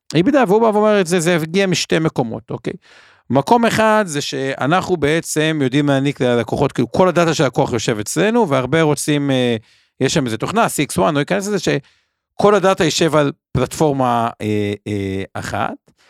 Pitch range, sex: 120-165 Hz, male